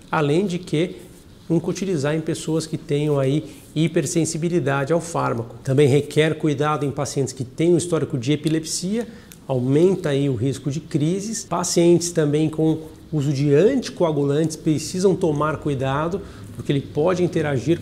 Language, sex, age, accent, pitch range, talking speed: Portuguese, male, 50-69, Brazilian, 150-175 Hz, 145 wpm